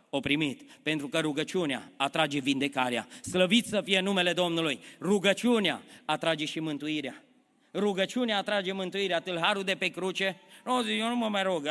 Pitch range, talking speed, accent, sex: 155-195 Hz, 150 wpm, native, male